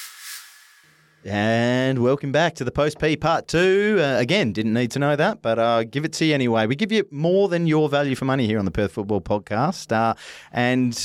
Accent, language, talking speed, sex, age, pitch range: Australian, English, 215 wpm, male, 30-49, 100-130 Hz